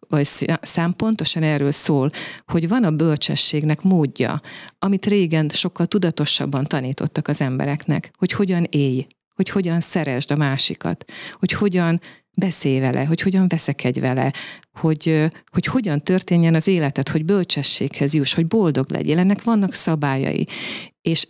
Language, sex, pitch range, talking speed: Hungarian, female, 145-180 Hz, 135 wpm